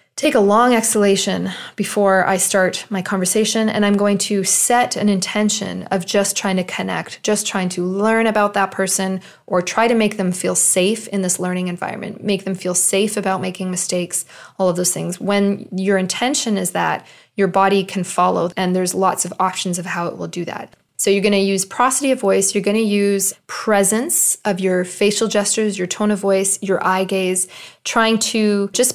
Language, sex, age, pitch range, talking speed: English, female, 20-39, 185-220 Hz, 200 wpm